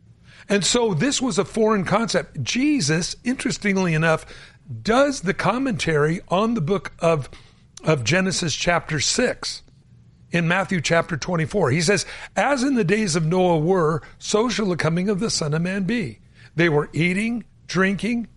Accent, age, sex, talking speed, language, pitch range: American, 60-79, male, 155 wpm, English, 155-215 Hz